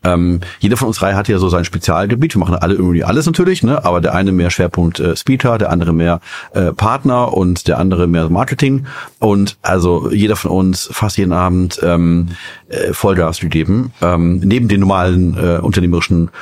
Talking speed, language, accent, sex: 185 wpm, German, German, male